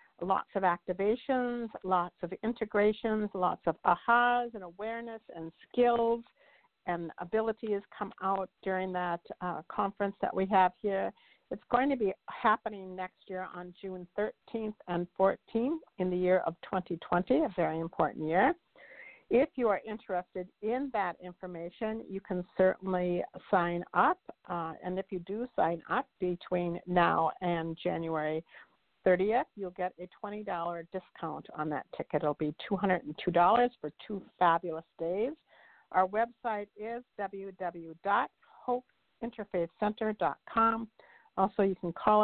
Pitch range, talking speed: 175-220 Hz, 130 wpm